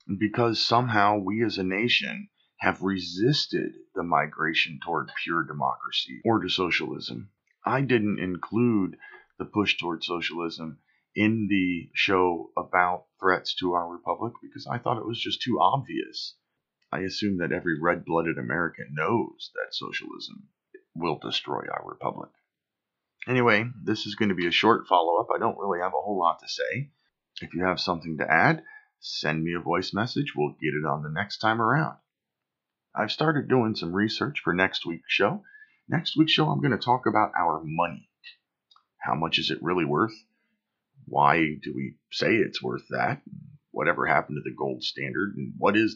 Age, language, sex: 40-59, English, male